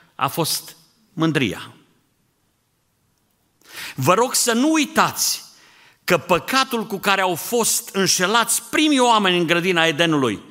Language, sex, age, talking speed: Romanian, male, 50-69, 115 wpm